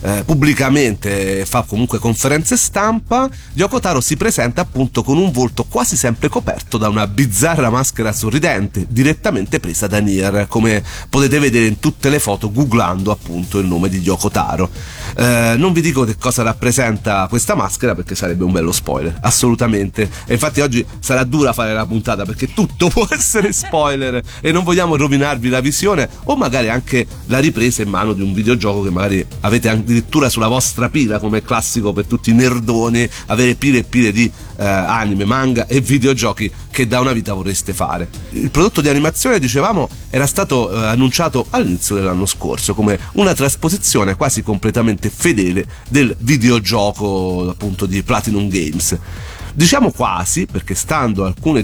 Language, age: Italian, 40-59